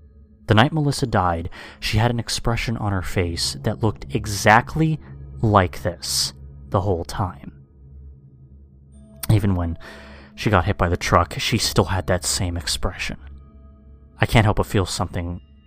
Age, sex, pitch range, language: 30-49, male, 90-125 Hz, English